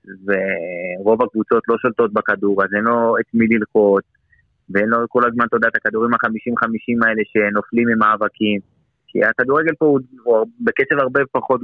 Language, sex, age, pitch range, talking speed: Hebrew, male, 30-49, 100-120 Hz, 160 wpm